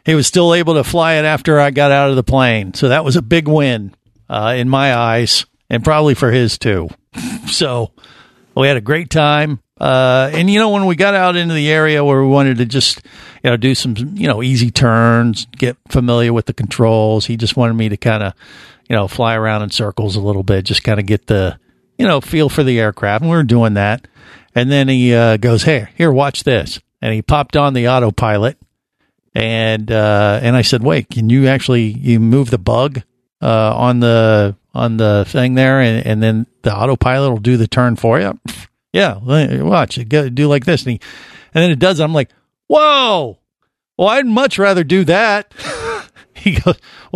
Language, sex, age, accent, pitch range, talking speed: English, male, 50-69, American, 115-150 Hz, 210 wpm